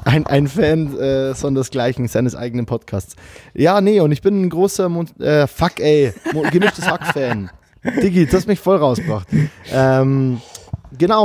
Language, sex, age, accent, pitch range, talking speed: German, male, 20-39, German, 120-160 Hz, 155 wpm